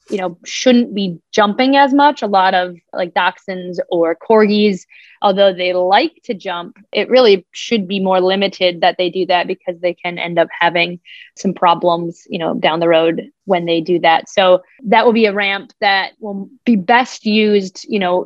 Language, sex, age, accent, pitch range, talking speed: English, female, 20-39, American, 180-210 Hz, 195 wpm